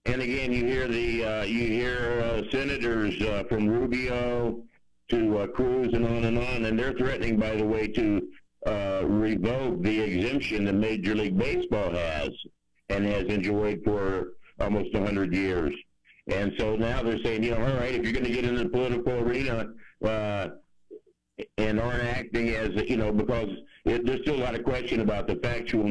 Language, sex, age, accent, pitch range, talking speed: English, male, 60-79, American, 105-120 Hz, 185 wpm